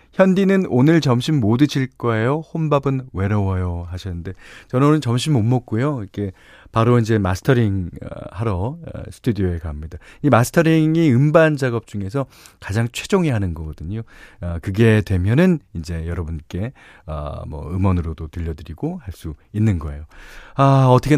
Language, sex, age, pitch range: Korean, male, 40-59, 95-150 Hz